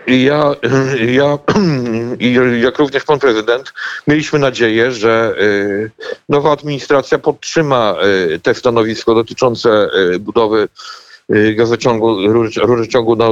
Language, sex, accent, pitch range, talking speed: Polish, male, native, 115-140 Hz, 75 wpm